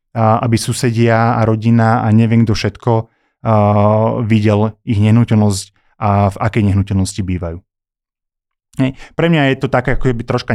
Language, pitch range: Slovak, 105-125 Hz